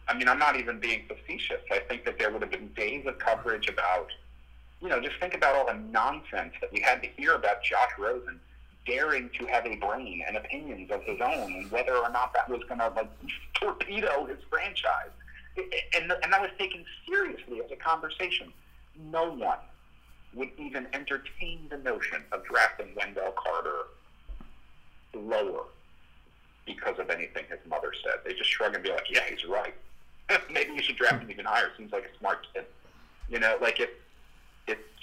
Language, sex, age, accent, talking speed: English, male, 50-69, American, 185 wpm